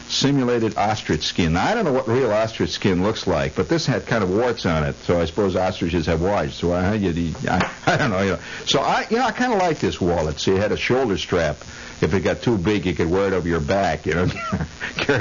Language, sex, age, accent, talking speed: English, male, 60-79, American, 270 wpm